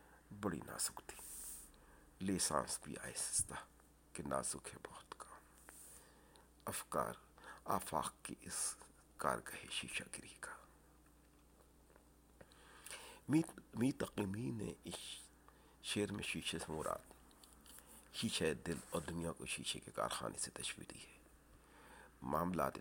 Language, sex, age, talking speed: Urdu, male, 60-79, 110 wpm